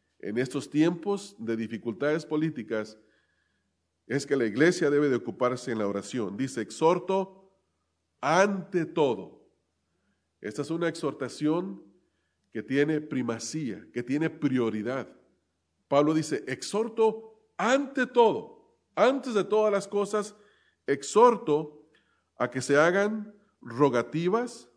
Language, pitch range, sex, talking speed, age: English, 120-180 Hz, male, 110 wpm, 40-59